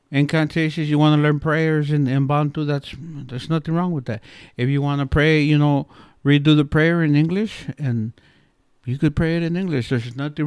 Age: 60-79